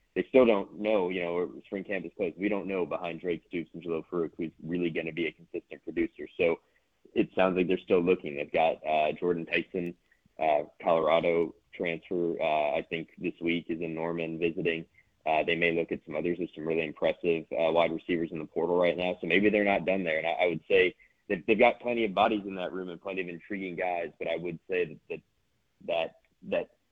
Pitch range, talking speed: 85-105 Hz, 230 wpm